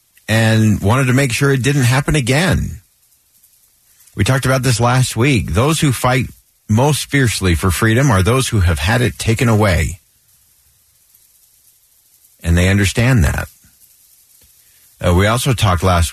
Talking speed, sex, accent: 145 wpm, male, American